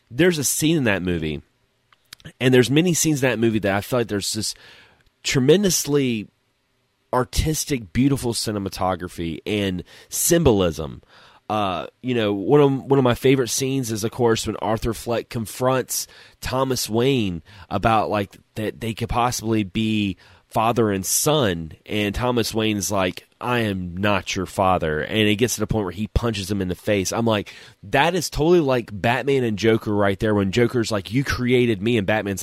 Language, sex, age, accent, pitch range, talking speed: English, male, 30-49, American, 100-125 Hz, 175 wpm